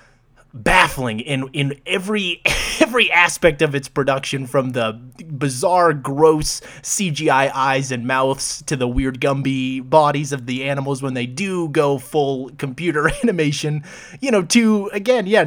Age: 20-39